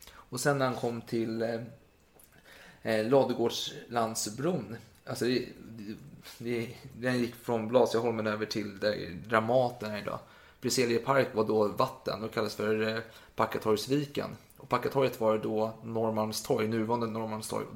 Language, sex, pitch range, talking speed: Swedish, male, 110-130 Hz, 140 wpm